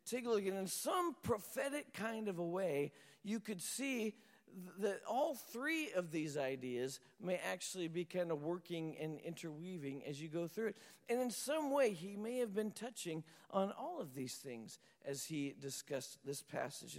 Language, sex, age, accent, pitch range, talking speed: English, male, 50-69, American, 170-240 Hz, 185 wpm